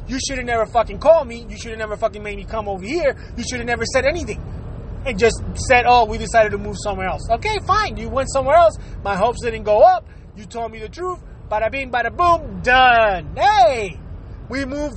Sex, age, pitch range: male, 30-49, 245-340 Hz